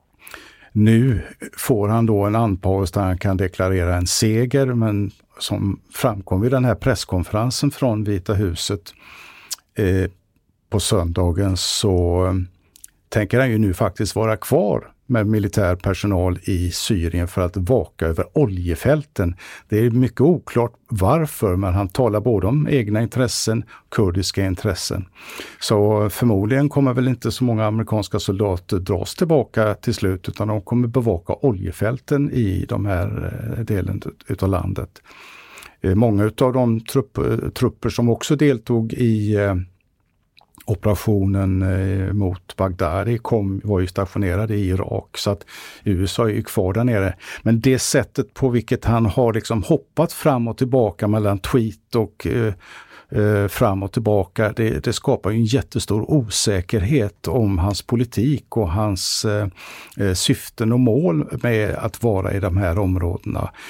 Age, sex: 50-69, male